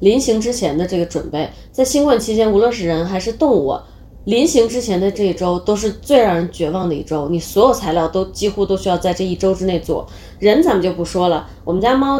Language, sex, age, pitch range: Chinese, female, 20-39, 170-210 Hz